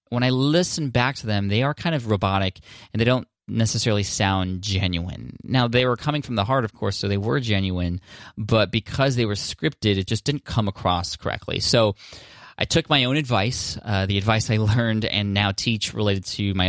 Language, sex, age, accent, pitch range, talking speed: English, male, 20-39, American, 95-115 Hz, 210 wpm